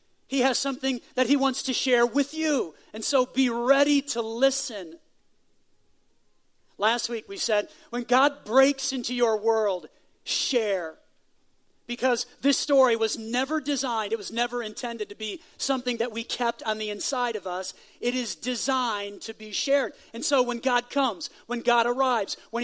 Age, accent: 40-59, American